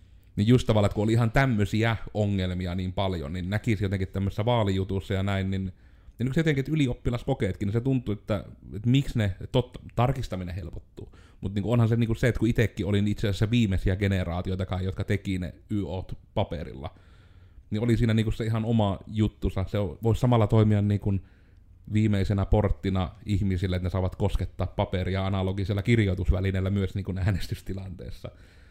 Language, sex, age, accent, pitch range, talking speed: Finnish, male, 30-49, native, 95-110 Hz, 155 wpm